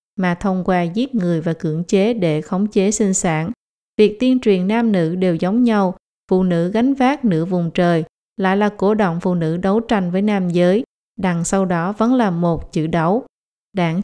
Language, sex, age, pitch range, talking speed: Vietnamese, female, 20-39, 175-210 Hz, 205 wpm